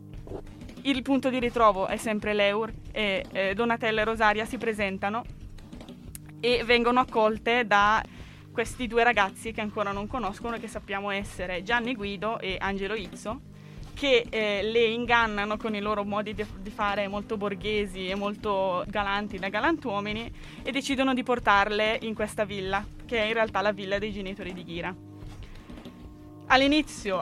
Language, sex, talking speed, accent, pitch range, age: Italian, female, 150 wpm, native, 200-230 Hz, 20-39